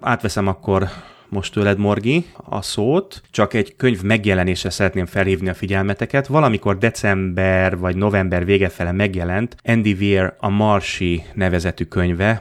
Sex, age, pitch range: male, 30-49, 95-110 Hz